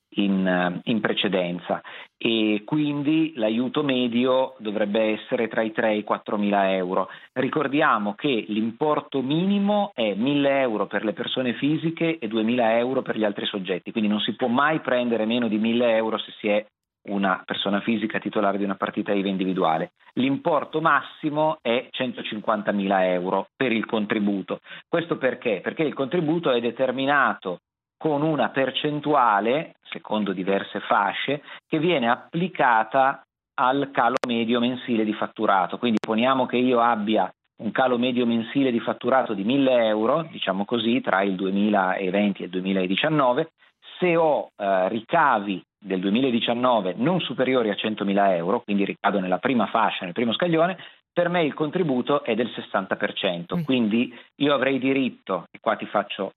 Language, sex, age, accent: Italian, male, 40-59, native